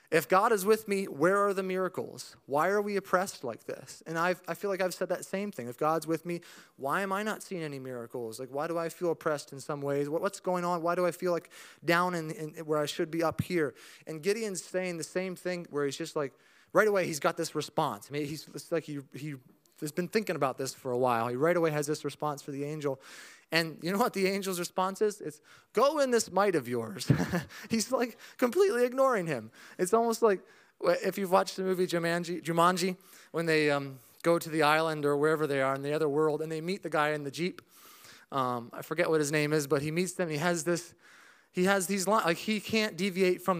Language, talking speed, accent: English, 245 wpm, American